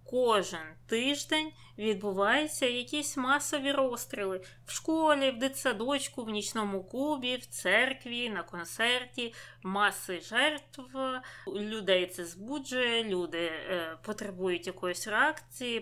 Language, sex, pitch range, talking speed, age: Ukrainian, female, 190-245 Hz, 100 wpm, 20-39